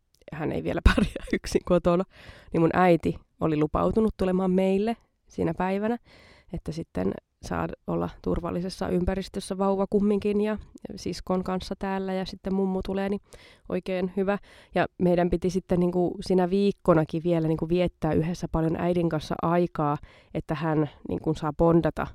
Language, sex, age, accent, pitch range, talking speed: Finnish, female, 20-39, native, 160-195 Hz, 140 wpm